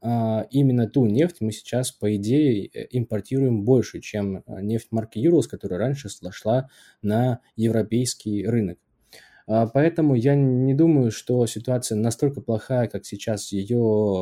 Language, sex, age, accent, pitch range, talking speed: Russian, male, 20-39, native, 105-130 Hz, 125 wpm